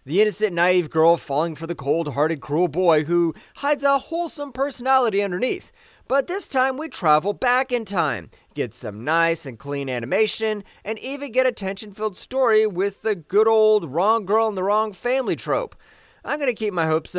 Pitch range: 155-225 Hz